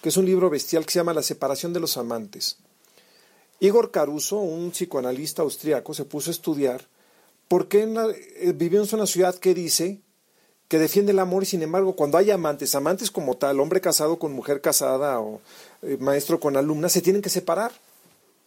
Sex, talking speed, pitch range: male, 185 wpm, 145-190 Hz